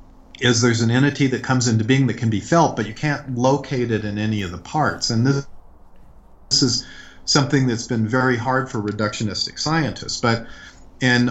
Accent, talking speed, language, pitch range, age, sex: American, 190 wpm, English, 110-130 Hz, 40-59, male